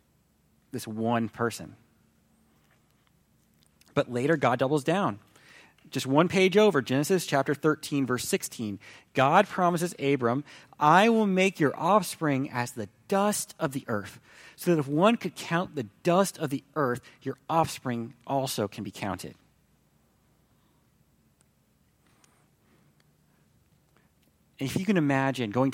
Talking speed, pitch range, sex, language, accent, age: 125 wpm, 120-180 Hz, male, English, American, 30-49